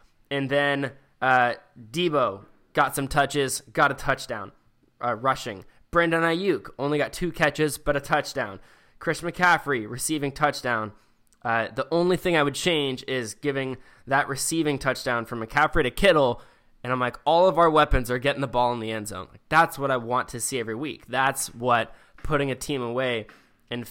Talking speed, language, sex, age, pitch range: 180 wpm, English, male, 10-29, 120-150 Hz